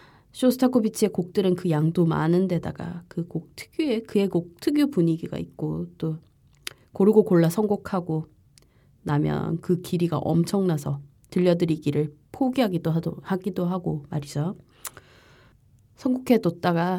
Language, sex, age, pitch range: Korean, female, 20-39, 155-190 Hz